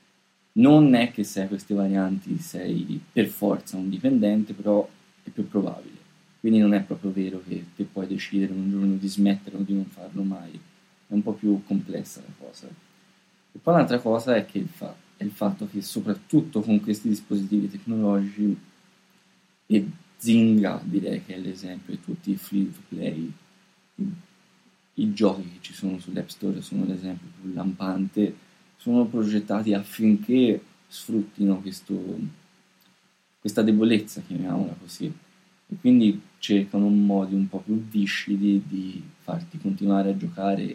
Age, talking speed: 20-39, 150 wpm